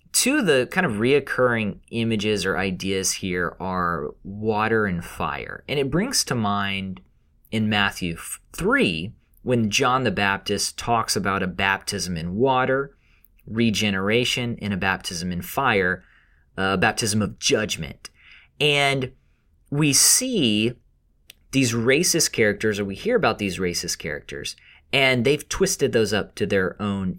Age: 30-49